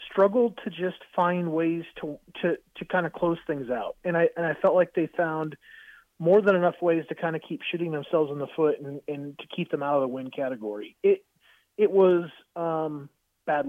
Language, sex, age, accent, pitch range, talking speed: English, male, 30-49, American, 145-185 Hz, 215 wpm